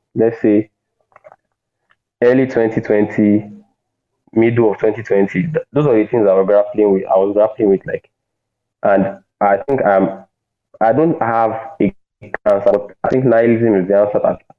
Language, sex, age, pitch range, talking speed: English, male, 20-39, 105-115 Hz, 160 wpm